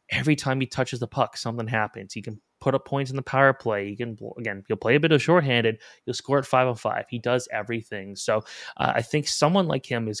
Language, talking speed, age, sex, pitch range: English, 255 wpm, 20-39, male, 110-130 Hz